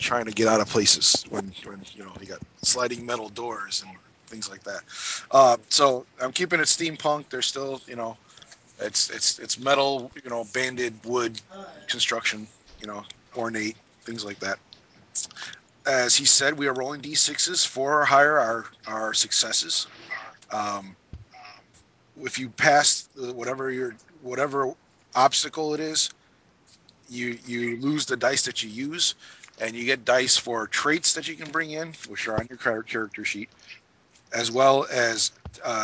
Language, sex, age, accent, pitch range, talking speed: English, male, 30-49, American, 115-140 Hz, 160 wpm